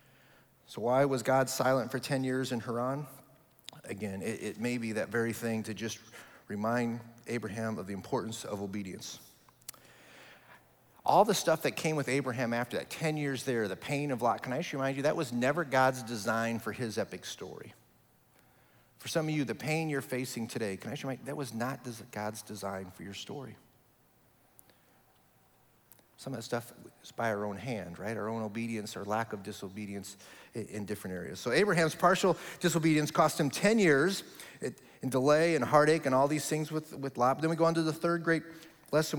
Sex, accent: male, American